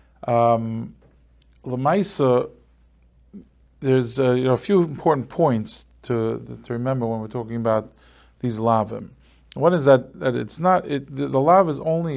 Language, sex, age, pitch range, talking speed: English, male, 40-59, 110-135 Hz, 155 wpm